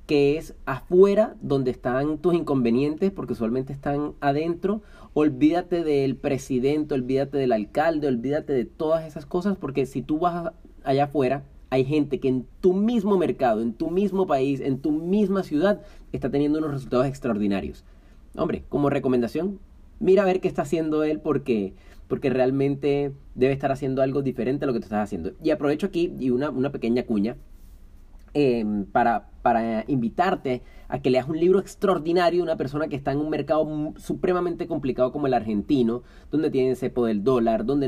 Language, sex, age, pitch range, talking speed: Spanish, male, 30-49, 125-155 Hz, 175 wpm